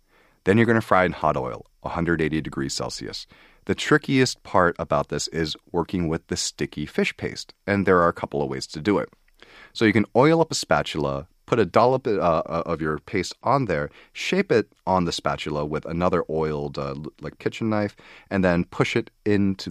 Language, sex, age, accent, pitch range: Korean, male, 30-49, American, 80-110 Hz